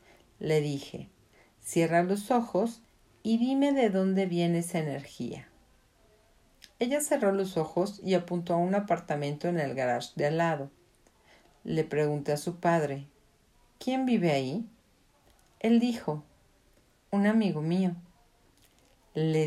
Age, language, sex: 50-69, Spanish, female